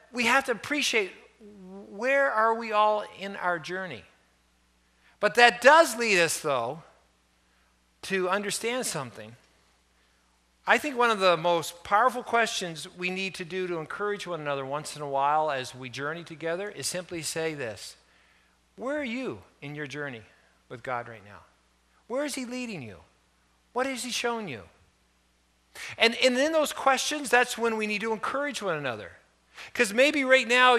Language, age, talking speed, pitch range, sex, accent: English, 50-69, 165 wpm, 145-245 Hz, male, American